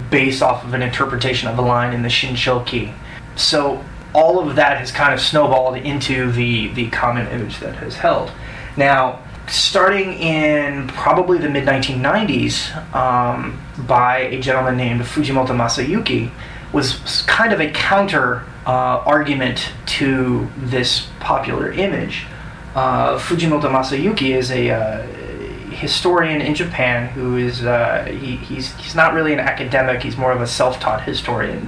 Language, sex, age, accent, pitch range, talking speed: English, male, 20-39, American, 125-150 Hz, 150 wpm